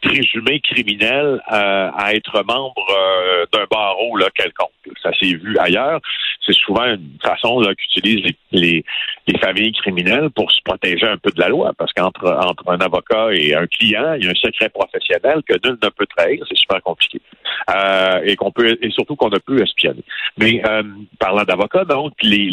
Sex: male